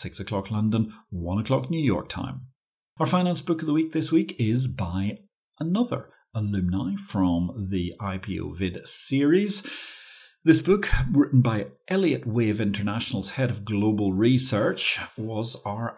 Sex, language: male, English